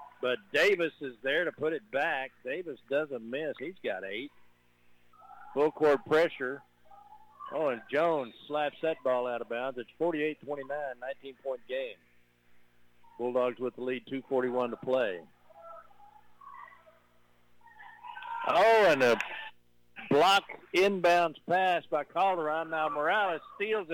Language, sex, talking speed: English, male, 120 wpm